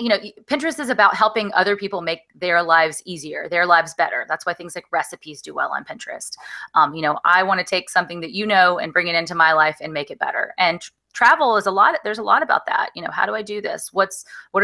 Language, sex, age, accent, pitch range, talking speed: English, female, 20-39, American, 165-205 Hz, 265 wpm